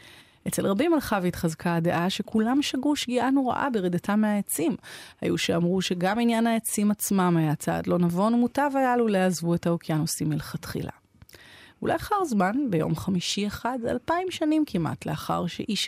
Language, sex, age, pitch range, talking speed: Hebrew, female, 30-49, 180-280 Hz, 145 wpm